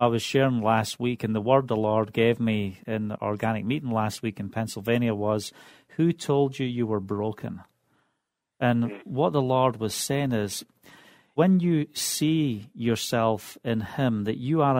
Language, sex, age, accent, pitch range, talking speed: English, male, 40-59, British, 115-145 Hz, 170 wpm